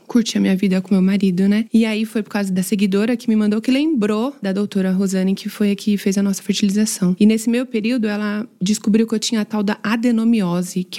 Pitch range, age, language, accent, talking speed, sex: 200-235 Hz, 20-39, Portuguese, Brazilian, 245 wpm, female